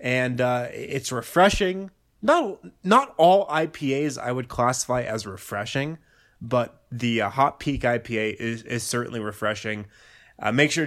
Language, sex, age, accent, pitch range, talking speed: English, male, 20-39, American, 115-145 Hz, 145 wpm